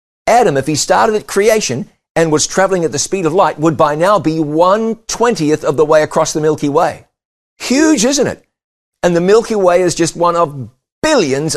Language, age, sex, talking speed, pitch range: English, 50-69, male, 195 wpm, 115-165 Hz